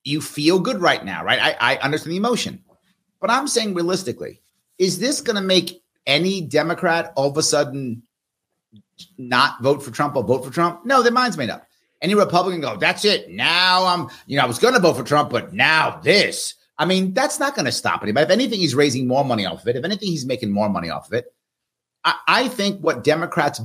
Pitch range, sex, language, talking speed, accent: 130-180 Hz, male, English, 225 wpm, American